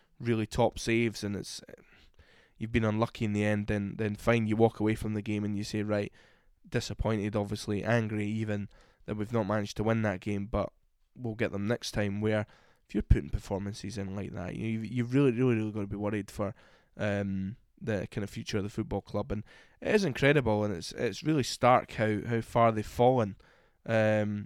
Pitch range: 105-120 Hz